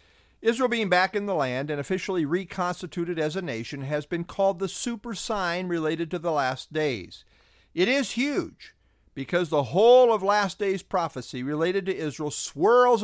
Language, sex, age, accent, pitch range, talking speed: English, male, 50-69, American, 135-205 Hz, 170 wpm